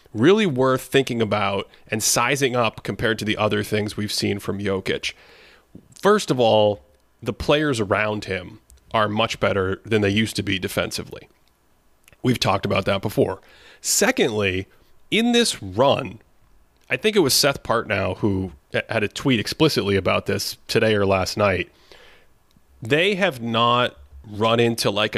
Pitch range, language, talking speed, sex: 105-125 Hz, English, 155 wpm, male